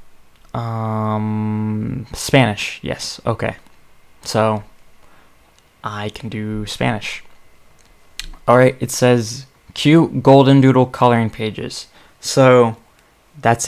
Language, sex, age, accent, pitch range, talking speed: English, male, 20-39, American, 110-130 Hz, 90 wpm